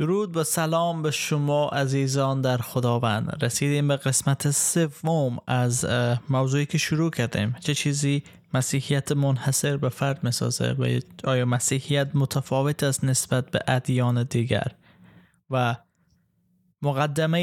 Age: 20-39